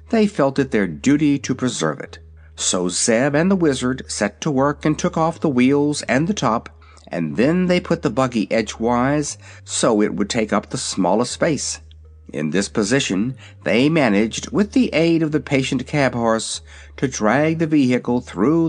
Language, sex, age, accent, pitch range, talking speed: English, male, 60-79, American, 100-150 Hz, 185 wpm